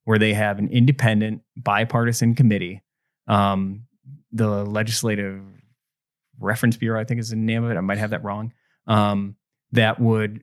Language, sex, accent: English, male, American